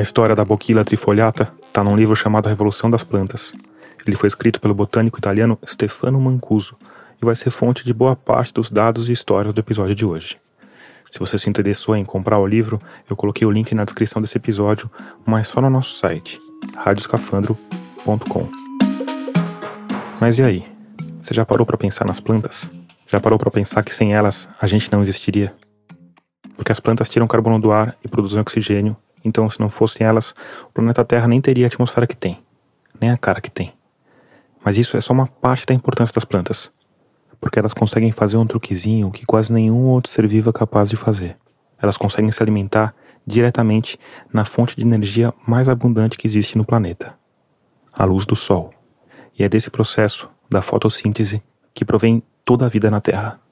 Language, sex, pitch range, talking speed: Portuguese, male, 105-120 Hz, 185 wpm